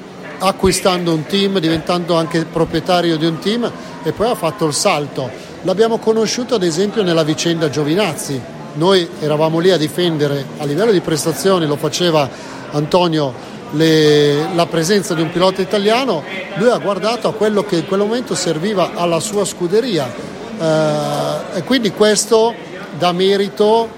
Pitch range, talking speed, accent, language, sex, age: 155-195 Hz, 150 wpm, native, Italian, male, 40-59